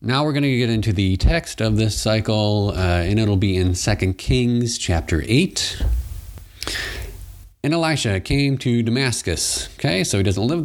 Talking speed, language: 170 wpm, English